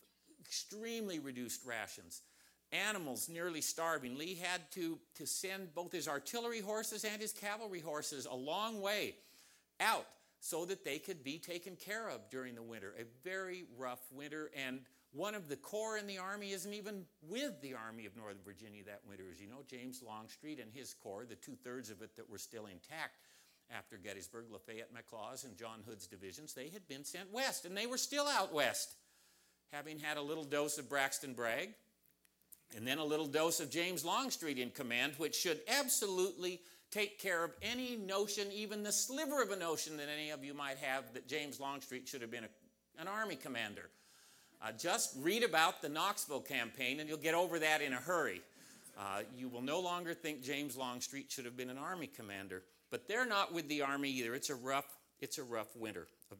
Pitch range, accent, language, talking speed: 125-190 Hz, American, English, 190 wpm